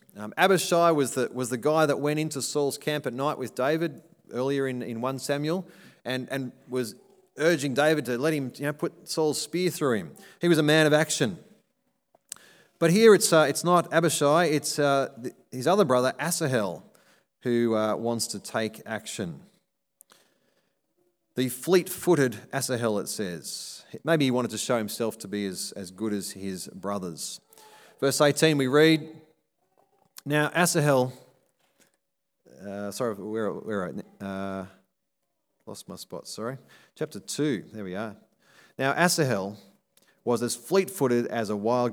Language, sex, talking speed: English, male, 155 wpm